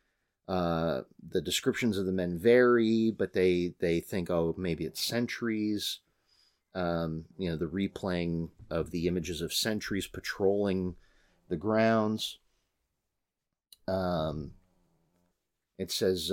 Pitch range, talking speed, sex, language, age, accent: 85-105 Hz, 110 wpm, male, English, 40-59, American